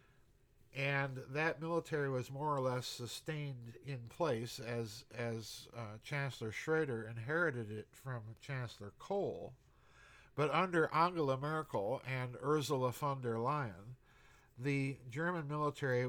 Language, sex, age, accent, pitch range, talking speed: English, male, 50-69, American, 120-145 Hz, 120 wpm